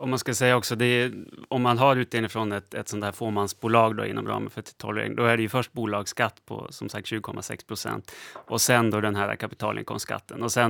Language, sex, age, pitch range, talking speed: Swedish, male, 30-49, 105-120 Hz, 225 wpm